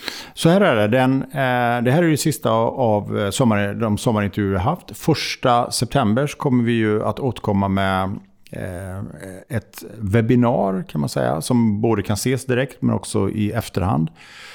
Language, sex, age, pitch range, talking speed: Swedish, male, 50-69, 100-125 Hz, 155 wpm